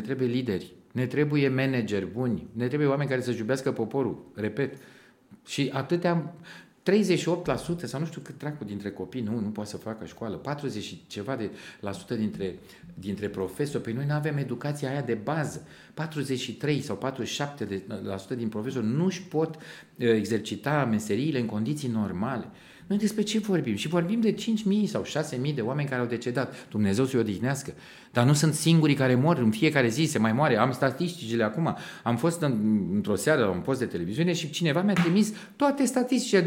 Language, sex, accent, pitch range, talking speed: Romanian, male, native, 120-170 Hz, 180 wpm